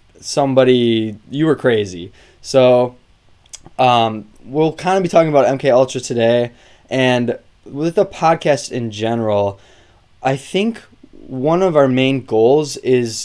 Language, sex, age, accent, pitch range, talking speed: English, male, 20-39, American, 110-130 Hz, 130 wpm